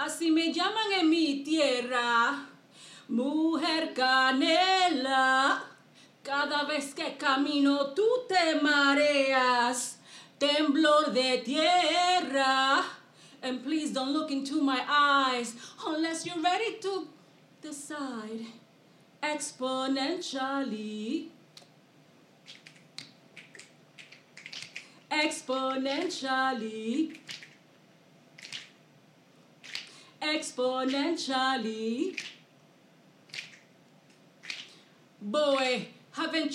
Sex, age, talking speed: female, 40-59, 55 wpm